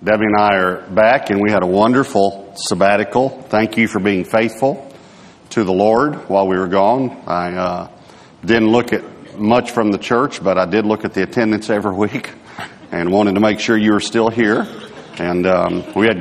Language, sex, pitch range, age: English, male, 95-115 Hz, 50-69